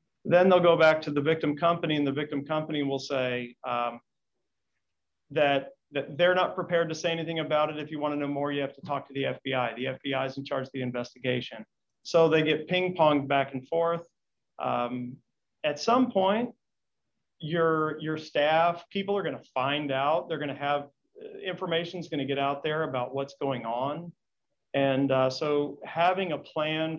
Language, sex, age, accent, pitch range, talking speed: English, male, 40-59, American, 135-155 Hz, 195 wpm